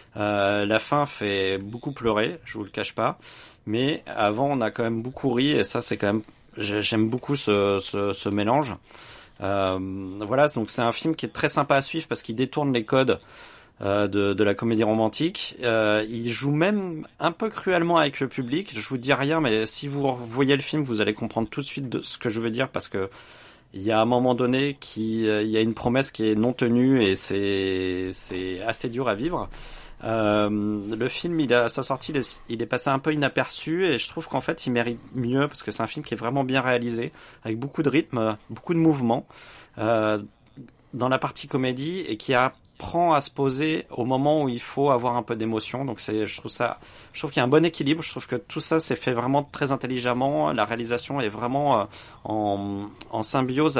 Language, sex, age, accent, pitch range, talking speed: French, male, 30-49, French, 105-135 Hz, 225 wpm